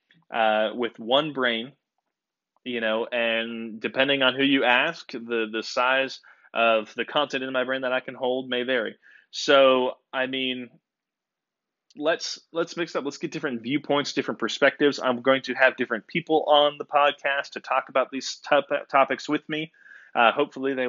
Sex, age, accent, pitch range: male, 20-39, American, 115-140 Hz